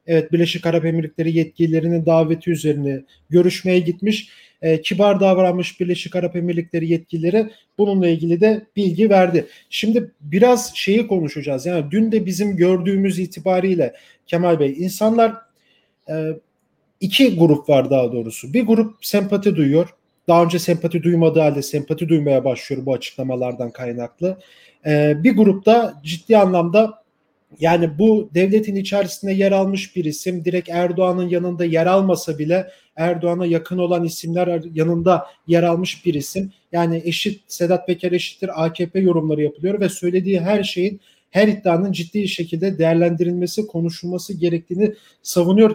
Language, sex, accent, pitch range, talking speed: German, male, Turkish, 165-195 Hz, 135 wpm